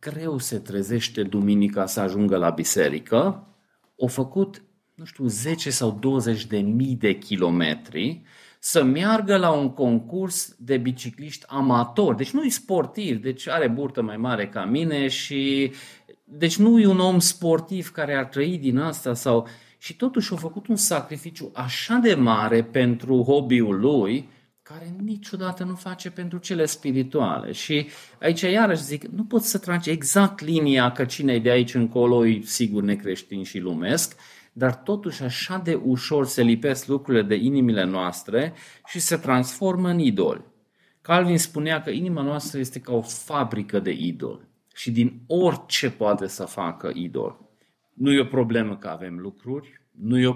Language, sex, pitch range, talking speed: Romanian, male, 120-170 Hz, 160 wpm